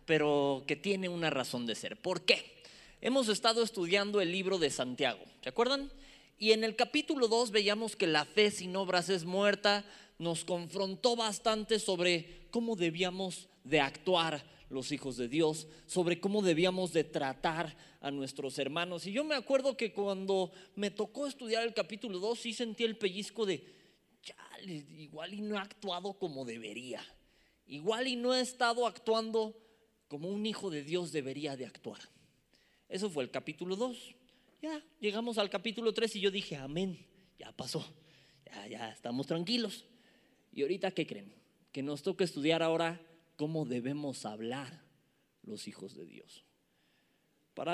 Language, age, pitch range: Spanish, 30-49, 160-220 Hz